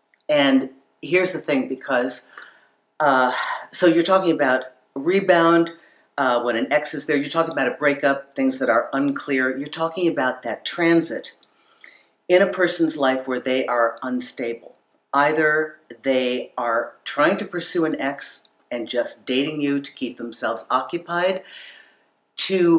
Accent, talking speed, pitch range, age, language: American, 145 wpm, 125-170 Hz, 50-69, English